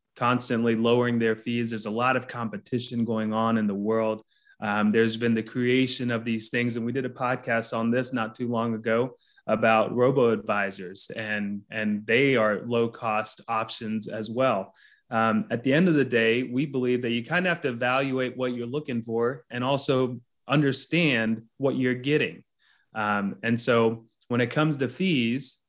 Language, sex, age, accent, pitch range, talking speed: English, male, 30-49, American, 115-130 Hz, 180 wpm